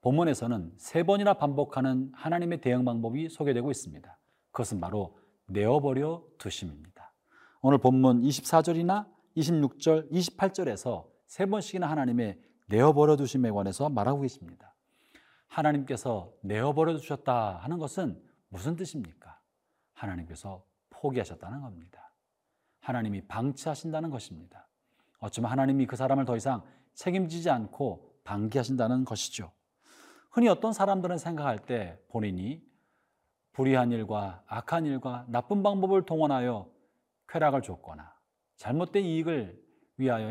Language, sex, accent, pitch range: Korean, male, native, 115-165 Hz